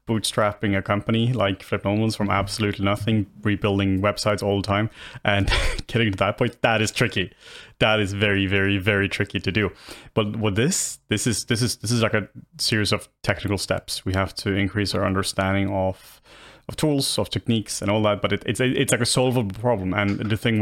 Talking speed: 200 wpm